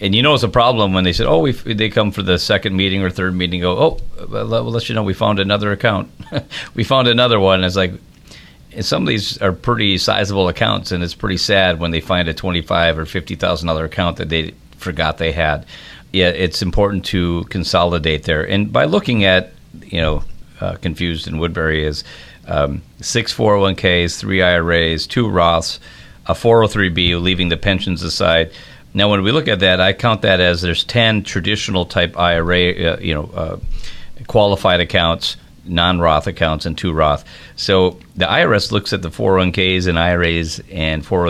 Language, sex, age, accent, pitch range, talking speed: English, male, 50-69, American, 85-100 Hz, 200 wpm